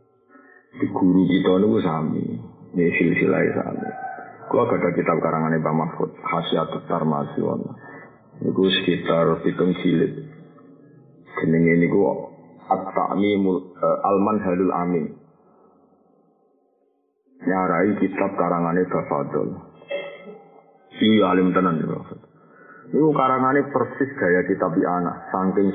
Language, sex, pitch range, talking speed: Indonesian, male, 90-130 Hz, 115 wpm